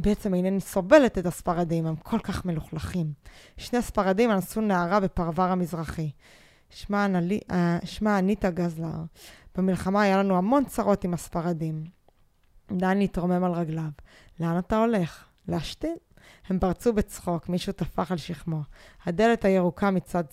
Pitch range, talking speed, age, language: 165-195 Hz, 130 wpm, 20-39, Hebrew